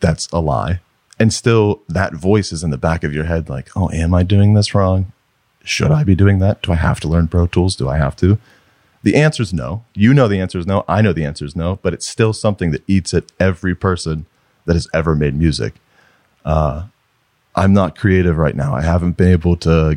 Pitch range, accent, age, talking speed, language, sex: 80-100 Hz, American, 30-49, 235 wpm, English, male